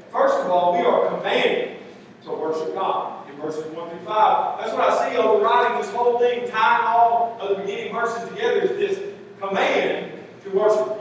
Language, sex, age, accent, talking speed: English, male, 40-59, American, 185 wpm